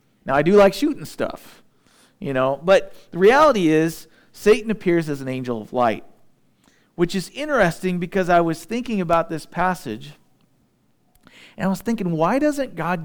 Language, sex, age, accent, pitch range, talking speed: English, male, 40-59, American, 150-195 Hz, 165 wpm